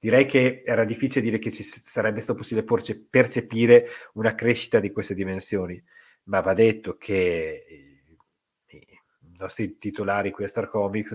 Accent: native